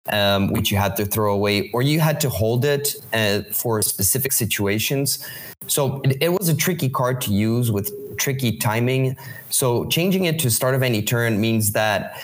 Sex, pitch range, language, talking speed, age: male, 105-130 Hz, English, 190 wpm, 20-39